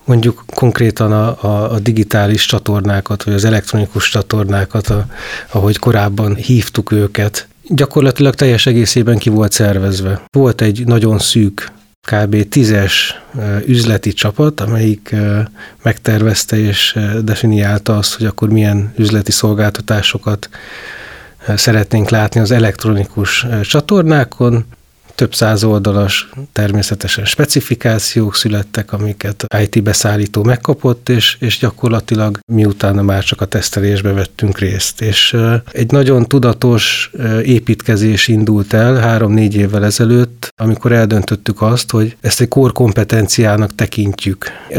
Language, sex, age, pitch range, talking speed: Hungarian, male, 30-49, 105-120 Hz, 115 wpm